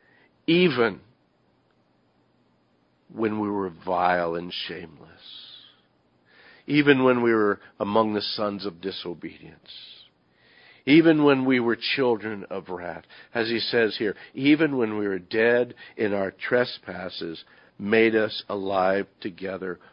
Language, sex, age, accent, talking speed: English, male, 50-69, American, 115 wpm